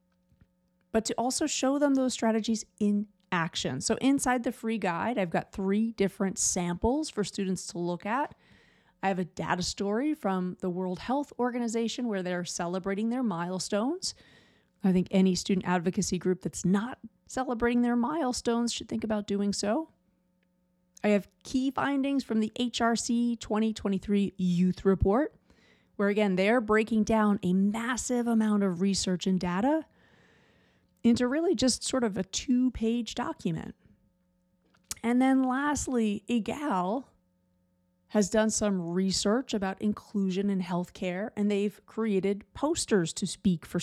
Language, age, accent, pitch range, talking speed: English, 30-49, American, 185-235 Hz, 140 wpm